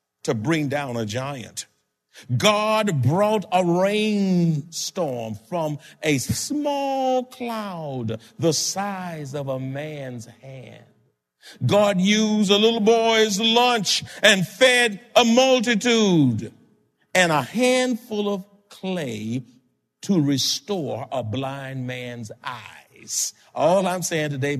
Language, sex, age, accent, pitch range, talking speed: English, male, 50-69, American, 125-210 Hz, 105 wpm